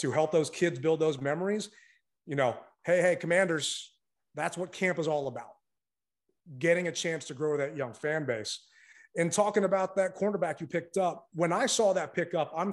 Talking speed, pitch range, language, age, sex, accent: 200 wpm, 155-190 Hz, English, 30-49, male, American